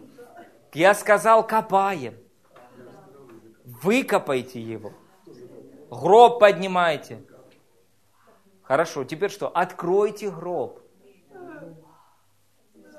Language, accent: Russian, native